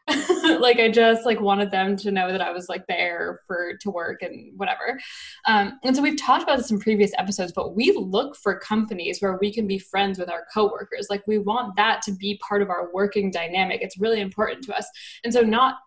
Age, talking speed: 10-29, 225 wpm